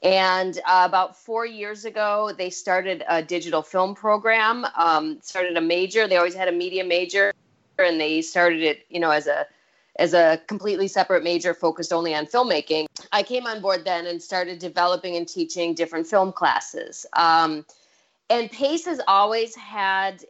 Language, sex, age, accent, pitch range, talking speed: English, female, 30-49, American, 165-195 Hz, 170 wpm